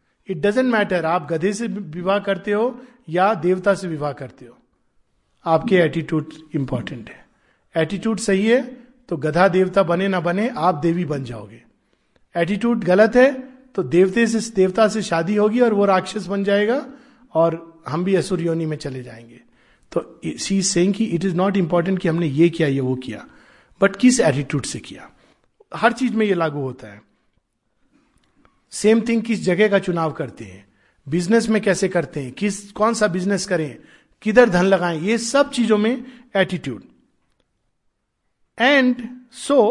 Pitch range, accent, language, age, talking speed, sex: 165-220 Hz, native, Hindi, 50-69, 165 wpm, male